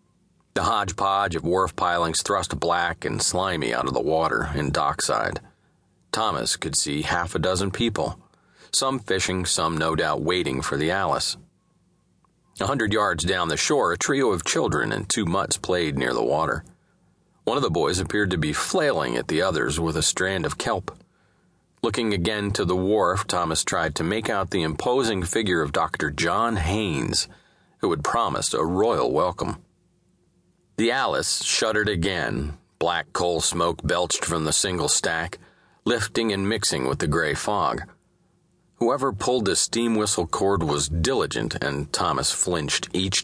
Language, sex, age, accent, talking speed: English, male, 40-59, American, 165 wpm